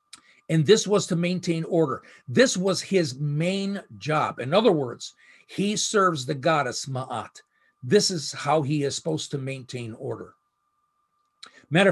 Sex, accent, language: male, American, English